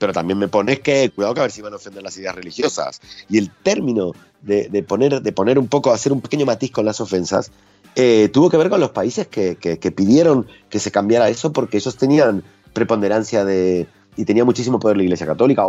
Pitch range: 100-135 Hz